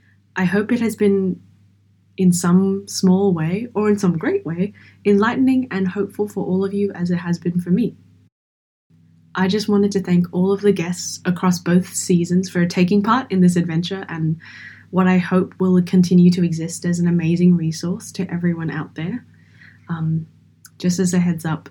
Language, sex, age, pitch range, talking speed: English, female, 10-29, 160-195 Hz, 185 wpm